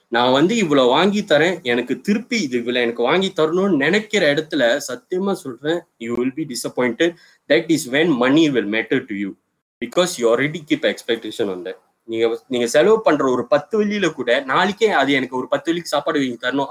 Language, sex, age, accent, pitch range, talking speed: Tamil, male, 20-39, native, 125-185 Hz, 185 wpm